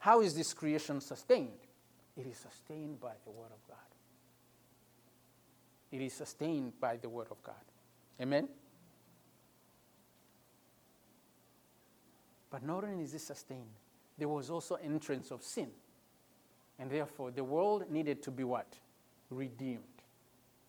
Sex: male